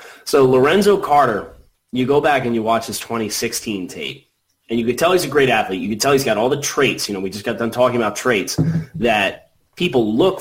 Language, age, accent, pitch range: English, 30-49, American, 100-130 Hz